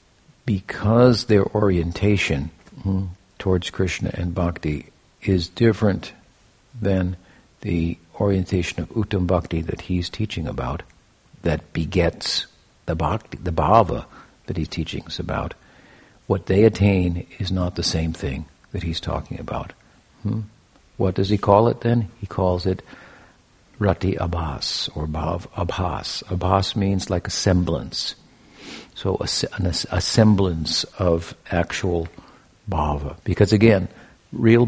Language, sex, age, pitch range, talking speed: English, male, 60-79, 85-105 Hz, 125 wpm